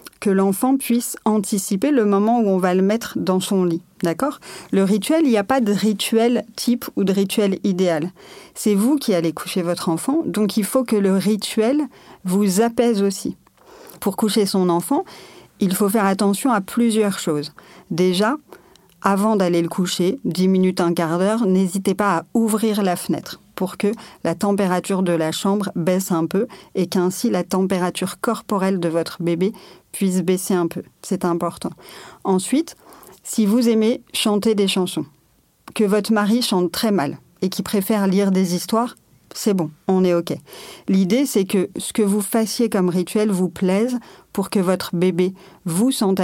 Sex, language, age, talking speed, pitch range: female, French, 40-59, 175 wpm, 185-220 Hz